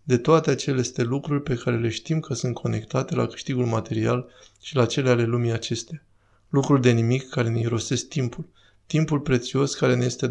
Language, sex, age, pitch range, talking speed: Romanian, male, 20-39, 120-135 Hz, 185 wpm